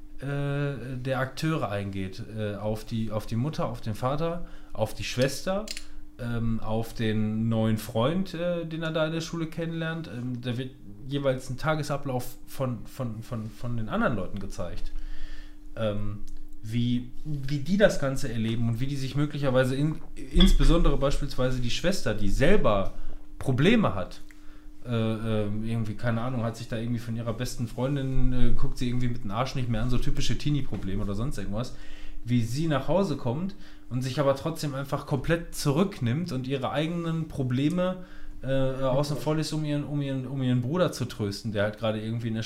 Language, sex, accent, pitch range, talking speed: German, male, German, 110-145 Hz, 160 wpm